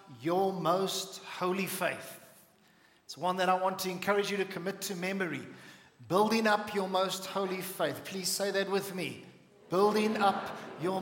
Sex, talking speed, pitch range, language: male, 165 wpm, 175-205 Hz, English